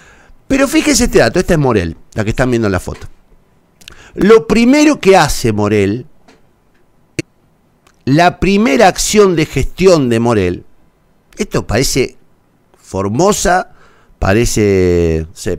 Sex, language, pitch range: male, Spanish, 115-190 Hz